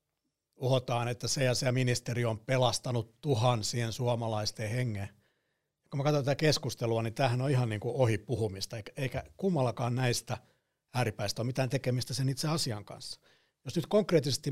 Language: Finnish